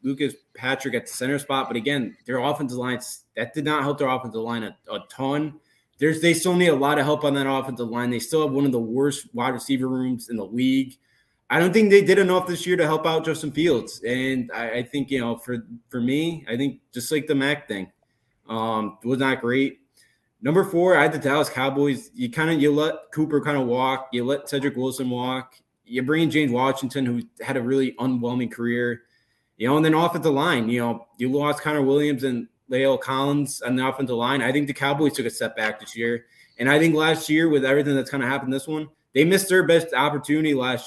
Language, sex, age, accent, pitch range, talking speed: English, male, 20-39, American, 125-150 Hz, 240 wpm